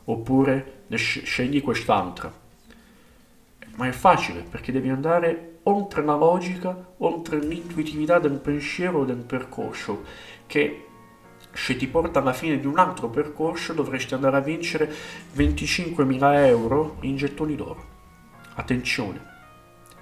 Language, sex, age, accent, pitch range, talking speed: Italian, male, 40-59, native, 90-150 Hz, 115 wpm